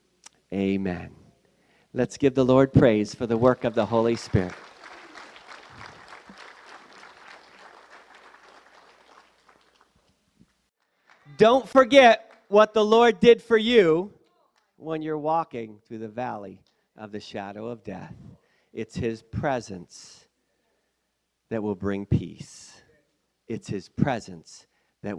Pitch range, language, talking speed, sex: 105-145 Hz, English, 100 wpm, male